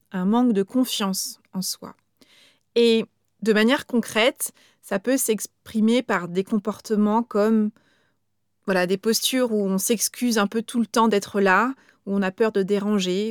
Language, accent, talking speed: French, French, 160 wpm